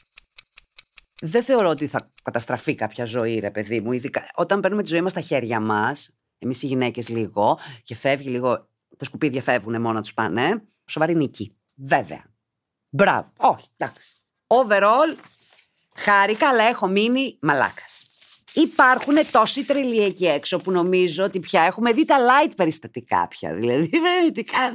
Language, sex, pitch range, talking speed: Greek, female, 155-230 Hz, 155 wpm